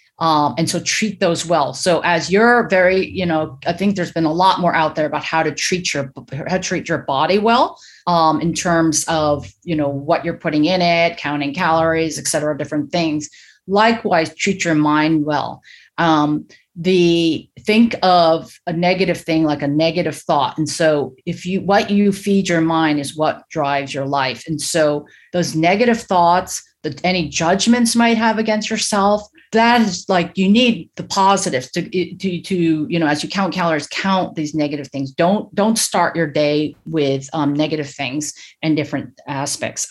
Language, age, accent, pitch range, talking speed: English, 30-49, American, 155-185 Hz, 185 wpm